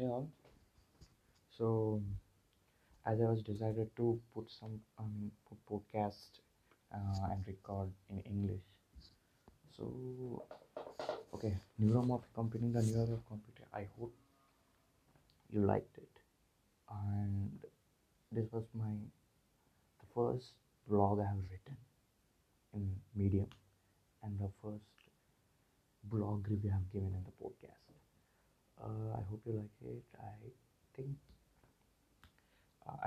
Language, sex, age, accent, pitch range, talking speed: Telugu, male, 20-39, native, 100-115 Hz, 120 wpm